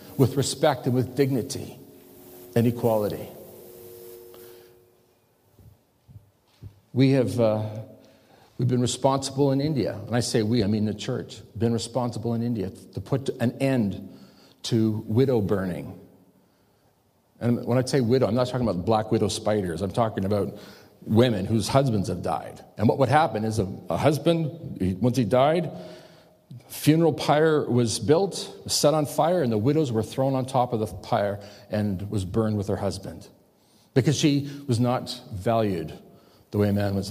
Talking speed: 160 wpm